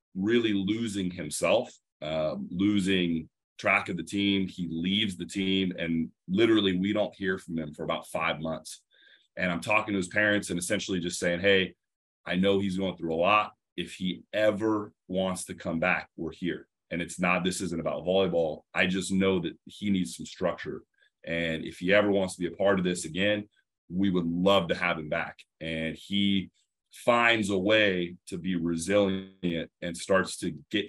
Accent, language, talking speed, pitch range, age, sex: American, English, 190 wpm, 85-100 Hz, 30-49, male